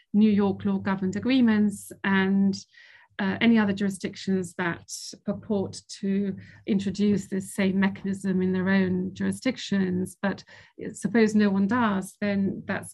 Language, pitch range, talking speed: English, 190-215 Hz, 125 wpm